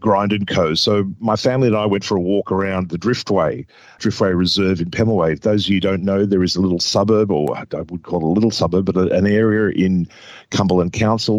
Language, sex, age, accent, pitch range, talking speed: English, male, 50-69, Australian, 95-110 Hz, 230 wpm